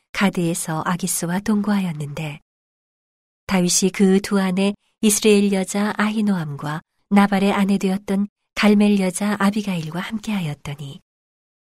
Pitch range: 180-210 Hz